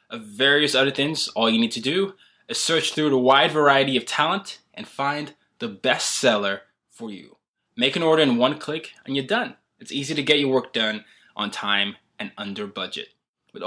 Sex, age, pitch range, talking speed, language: male, 20-39, 115-165 Hz, 200 wpm, English